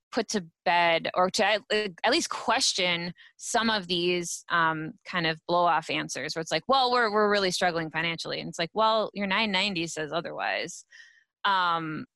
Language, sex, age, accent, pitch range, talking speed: English, female, 20-39, American, 170-215 Hz, 175 wpm